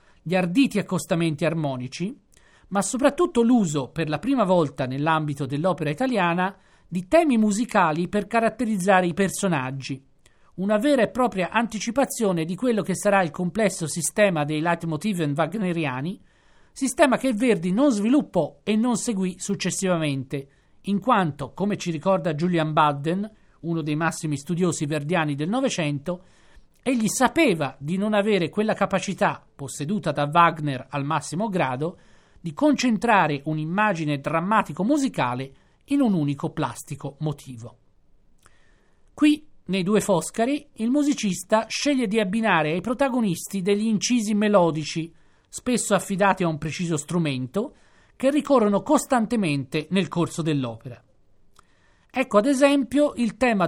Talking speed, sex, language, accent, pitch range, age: 125 wpm, male, Italian, native, 155-220 Hz, 40-59